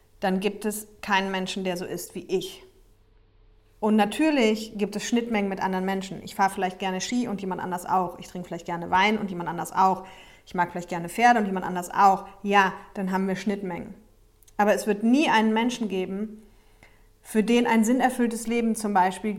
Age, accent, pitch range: 30-49, German, 175-225 Hz